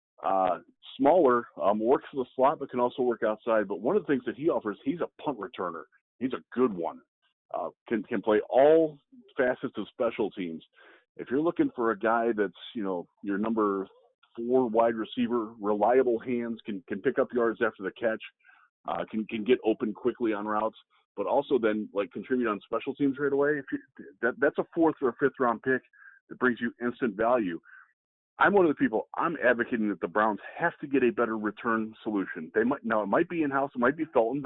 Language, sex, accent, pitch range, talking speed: English, male, American, 110-145 Hz, 215 wpm